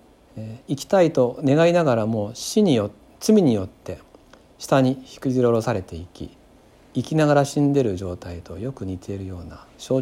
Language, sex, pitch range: Japanese, male, 100-130 Hz